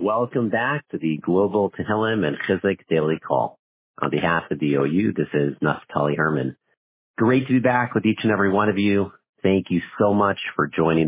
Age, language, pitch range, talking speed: 50-69, English, 75-100 Hz, 195 wpm